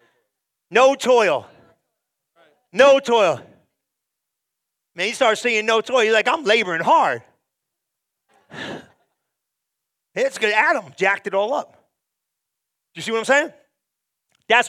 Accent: American